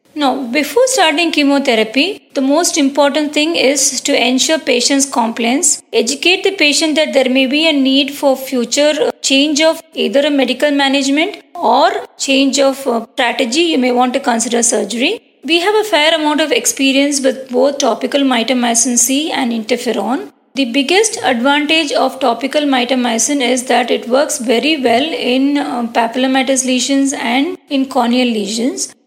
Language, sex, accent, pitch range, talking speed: English, female, Indian, 250-300 Hz, 155 wpm